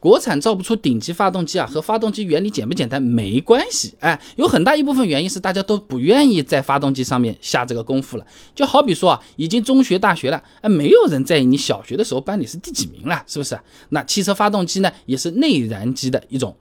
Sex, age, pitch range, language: male, 20-39, 135-225 Hz, Chinese